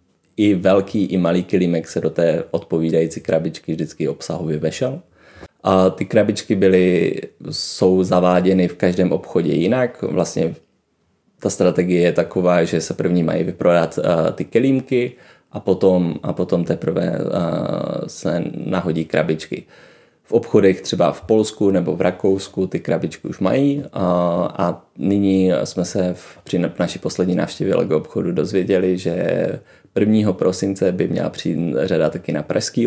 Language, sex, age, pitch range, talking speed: Czech, male, 20-39, 85-100 Hz, 145 wpm